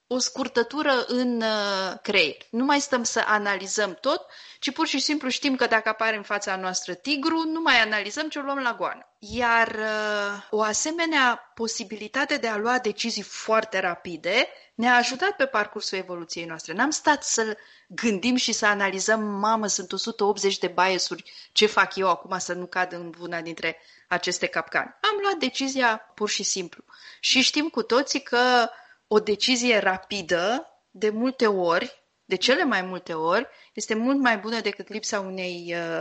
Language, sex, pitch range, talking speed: Romanian, female, 200-255 Hz, 165 wpm